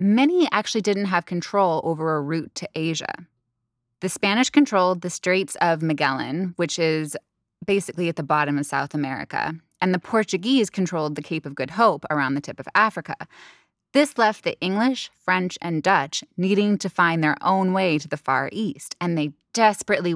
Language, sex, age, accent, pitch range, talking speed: English, female, 20-39, American, 150-200 Hz, 180 wpm